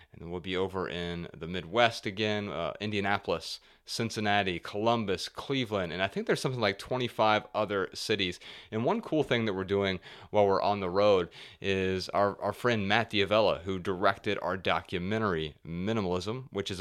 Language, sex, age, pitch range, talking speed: English, male, 30-49, 90-110 Hz, 170 wpm